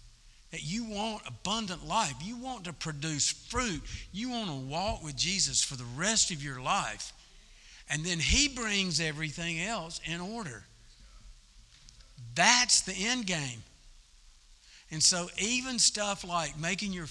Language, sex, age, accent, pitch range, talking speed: English, male, 50-69, American, 120-185 Hz, 145 wpm